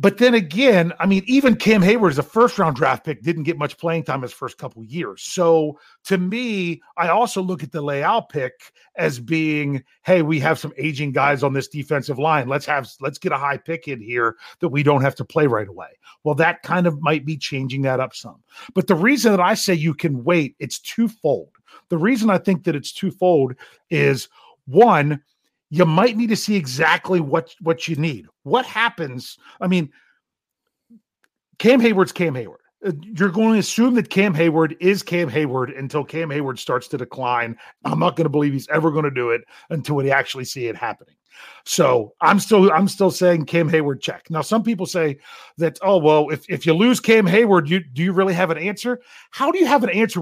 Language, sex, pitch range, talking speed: English, male, 145-195 Hz, 215 wpm